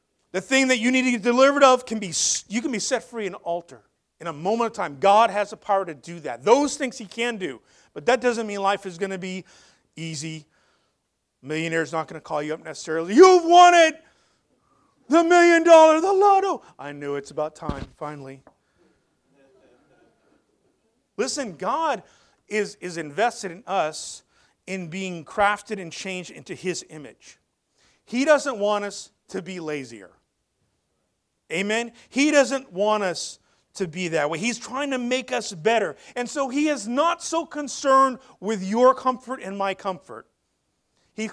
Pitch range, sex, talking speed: 155-240 Hz, male, 170 wpm